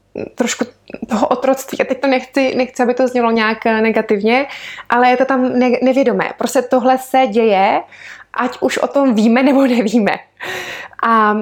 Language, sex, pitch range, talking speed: Czech, female, 205-260 Hz, 165 wpm